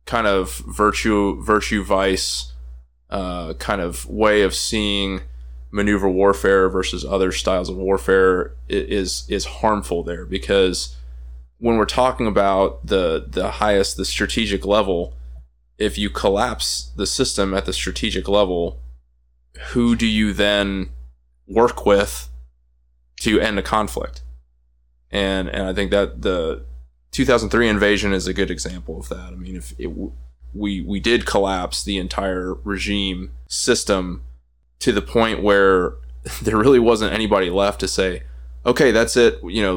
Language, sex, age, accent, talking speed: English, male, 20-39, American, 145 wpm